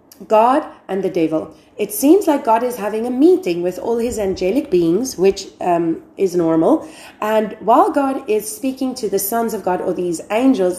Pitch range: 175-265 Hz